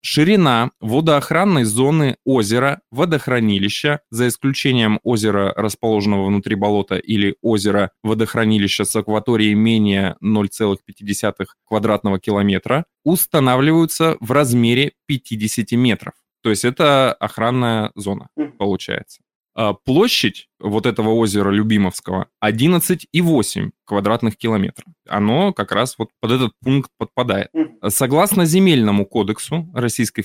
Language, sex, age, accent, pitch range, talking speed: Russian, male, 20-39, native, 105-140 Hz, 95 wpm